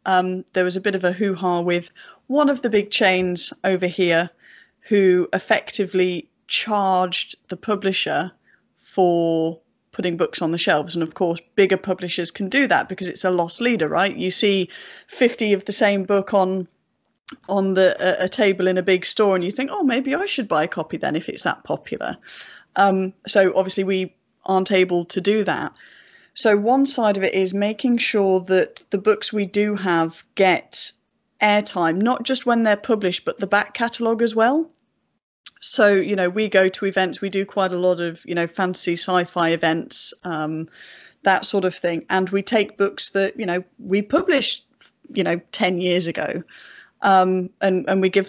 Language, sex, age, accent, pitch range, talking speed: English, female, 40-59, British, 180-210 Hz, 185 wpm